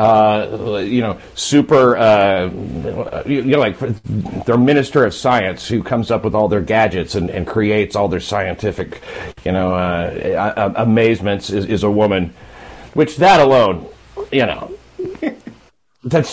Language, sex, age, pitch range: English, male, 40-59, 100-135 Hz